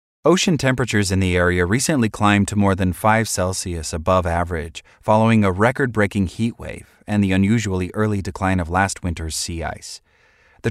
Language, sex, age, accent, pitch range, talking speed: English, male, 30-49, American, 90-115 Hz, 170 wpm